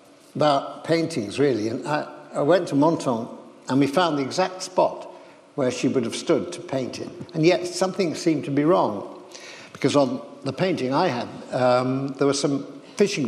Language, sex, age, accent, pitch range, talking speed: English, male, 60-79, British, 140-185 Hz, 185 wpm